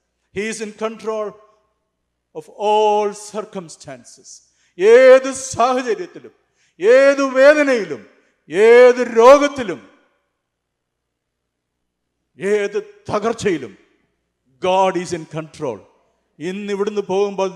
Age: 50-69